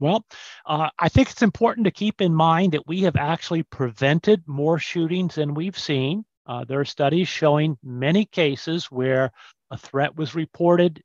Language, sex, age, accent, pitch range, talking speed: English, male, 50-69, American, 135-175 Hz, 175 wpm